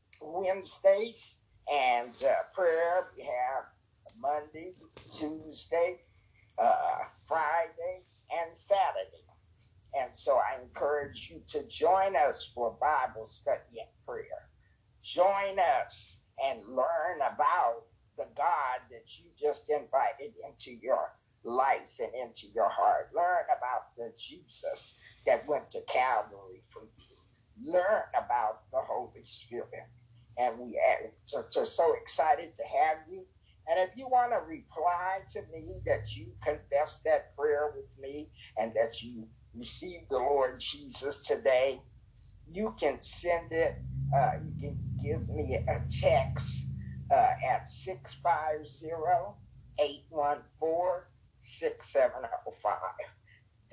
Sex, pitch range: male, 120-195 Hz